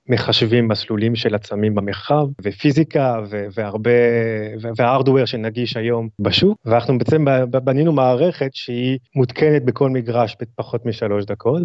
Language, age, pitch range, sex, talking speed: Hebrew, 30-49, 110-135 Hz, male, 120 wpm